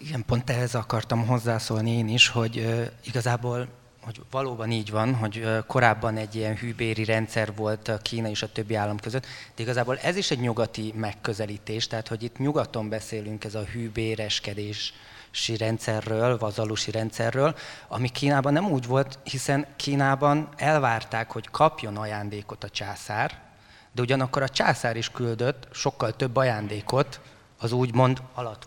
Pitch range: 110-125 Hz